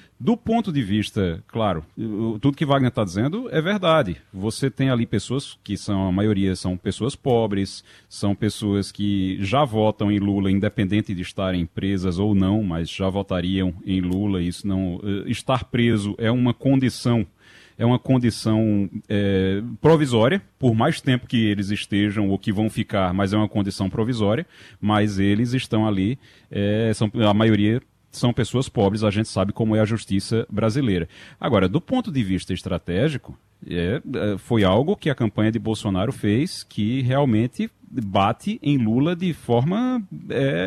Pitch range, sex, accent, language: 100-135 Hz, male, Brazilian, Portuguese